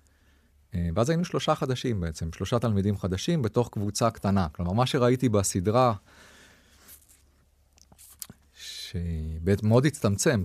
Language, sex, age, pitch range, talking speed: Hebrew, male, 30-49, 80-105 Hz, 105 wpm